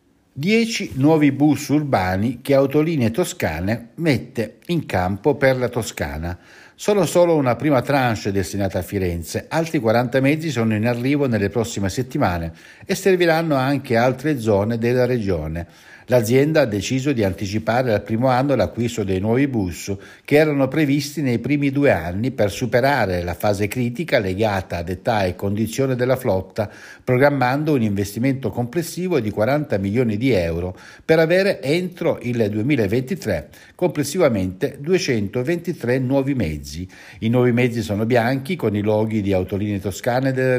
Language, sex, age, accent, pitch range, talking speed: Italian, male, 60-79, native, 105-140 Hz, 150 wpm